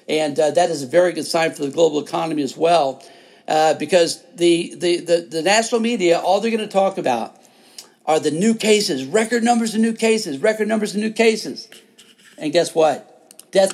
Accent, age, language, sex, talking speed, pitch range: American, 50-69, English, male, 200 wpm, 160-200 Hz